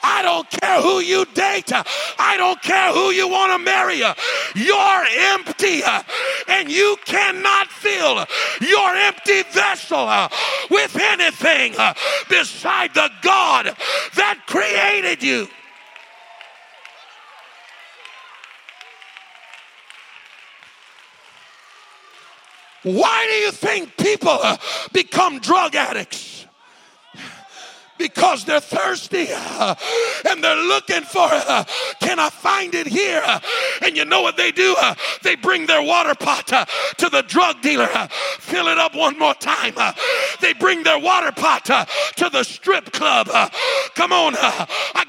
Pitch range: 335-390 Hz